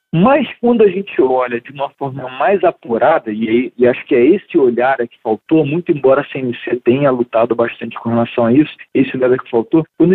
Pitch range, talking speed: 120-180 Hz, 205 wpm